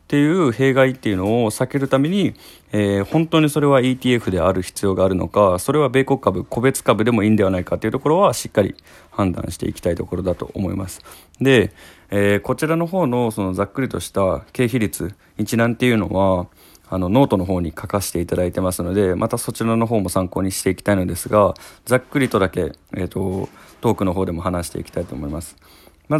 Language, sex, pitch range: Japanese, male, 95-120 Hz